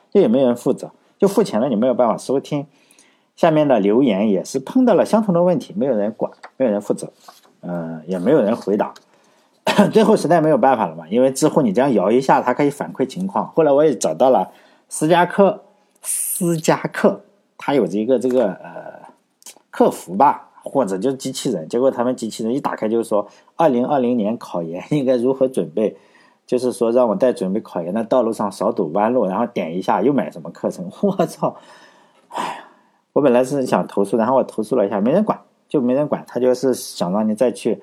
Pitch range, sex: 115-185 Hz, male